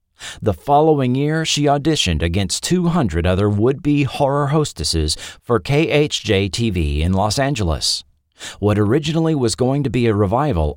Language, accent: English, American